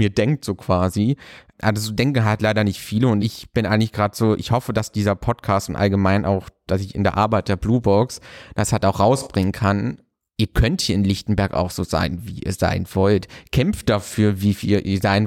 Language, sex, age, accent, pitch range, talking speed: German, male, 30-49, German, 100-120 Hz, 220 wpm